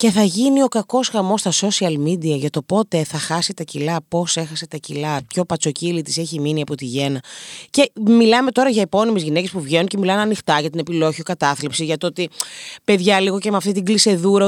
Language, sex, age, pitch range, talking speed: Greek, female, 30-49, 165-235 Hz, 215 wpm